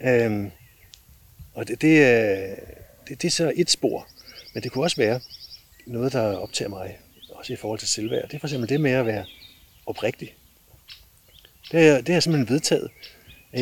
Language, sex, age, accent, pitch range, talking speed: Danish, male, 60-79, native, 105-130 Hz, 170 wpm